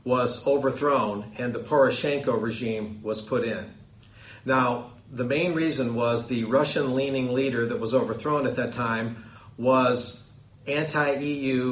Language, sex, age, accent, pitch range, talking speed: English, male, 50-69, American, 115-135 Hz, 130 wpm